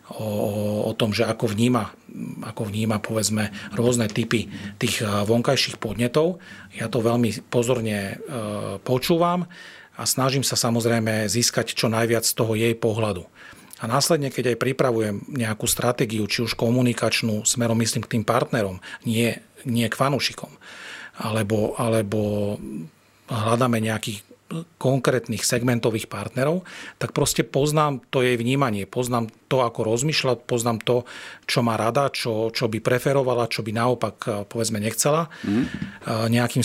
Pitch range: 110-130 Hz